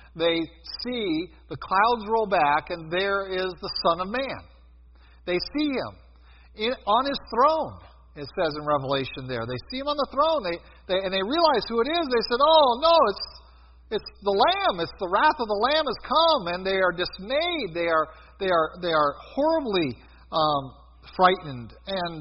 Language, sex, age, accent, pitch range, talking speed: English, male, 50-69, American, 140-215 Hz, 185 wpm